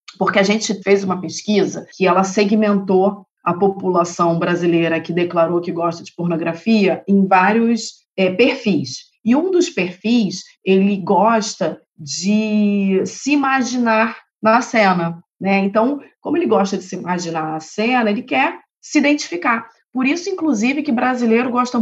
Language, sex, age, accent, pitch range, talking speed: Portuguese, female, 30-49, Brazilian, 175-220 Hz, 145 wpm